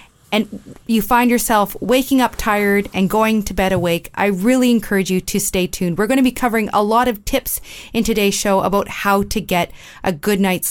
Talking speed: 215 wpm